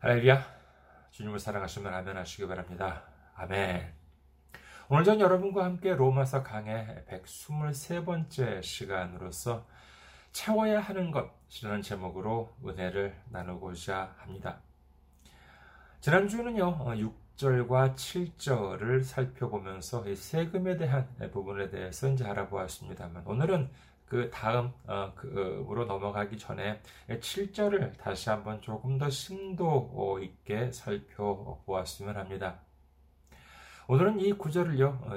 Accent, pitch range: native, 95-135 Hz